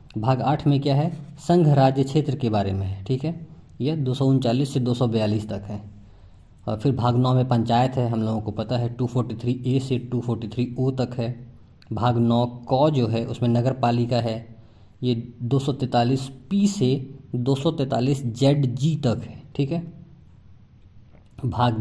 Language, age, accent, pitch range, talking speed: Hindi, 20-39, native, 115-145 Hz, 175 wpm